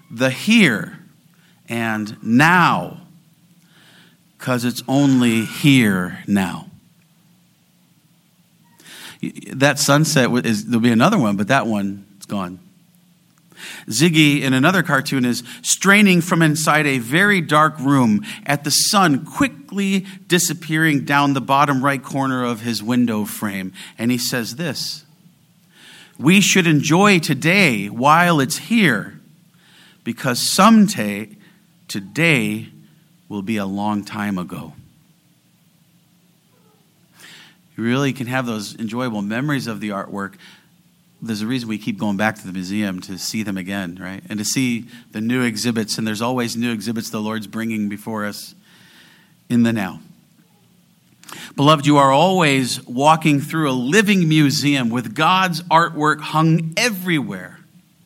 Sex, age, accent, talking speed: male, 40-59, American, 130 wpm